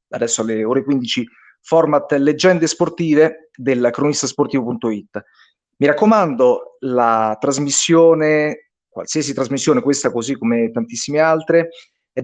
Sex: male